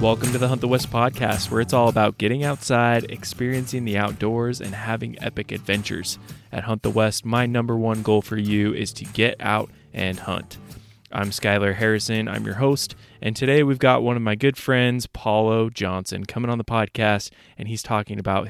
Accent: American